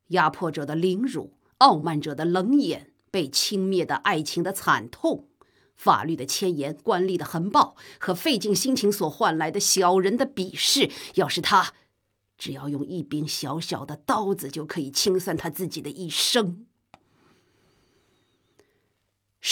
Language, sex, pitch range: Chinese, female, 165-215 Hz